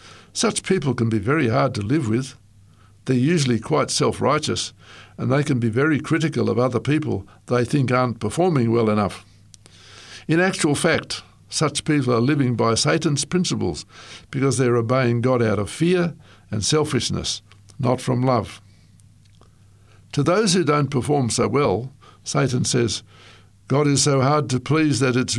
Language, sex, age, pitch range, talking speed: English, male, 60-79, 105-145 Hz, 160 wpm